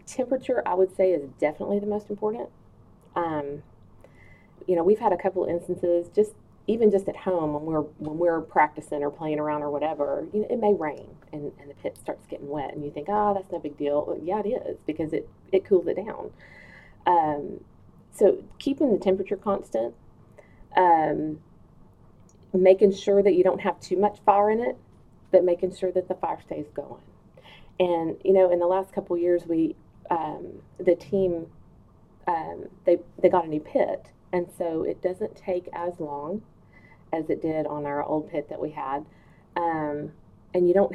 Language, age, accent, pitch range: English, 30-49, American, 155-200 Hz